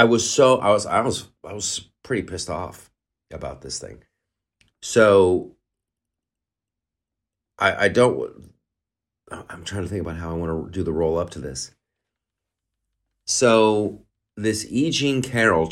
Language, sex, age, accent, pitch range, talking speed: English, male, 40-59, American, 95-125 Hz, 150 wpm